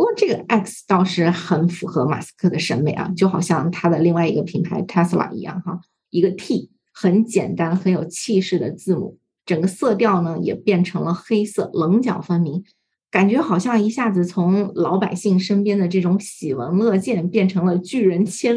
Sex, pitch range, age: female, 175-205 Hz, 20-39